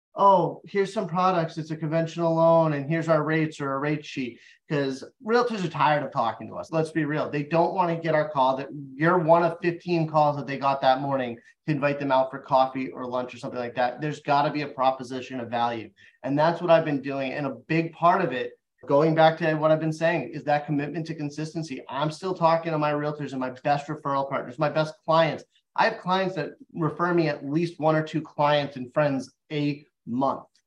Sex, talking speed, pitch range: male, 235 wpm, 140-165 Hz